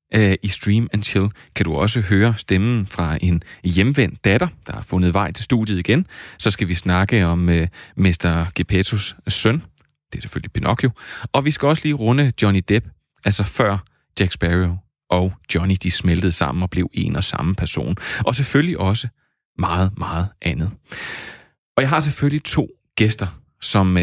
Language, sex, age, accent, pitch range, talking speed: Danish, male, 30-49, native, 90-120 Hz, 170 wpm